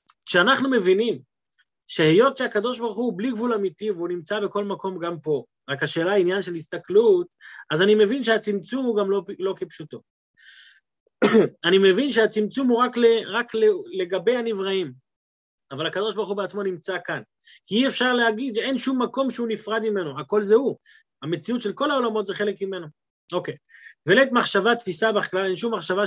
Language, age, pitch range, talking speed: Hebrew, 30-49, 165-230 Hz, 170 wpm